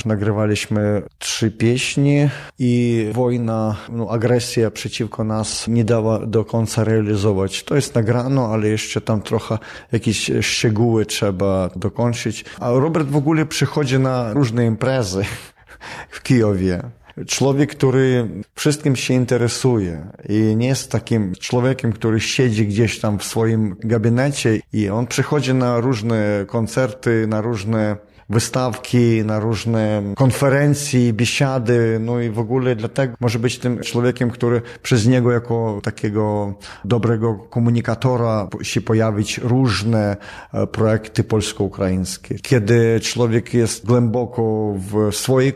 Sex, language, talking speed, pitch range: male, Polish, 120 wpm, 110-125 Hz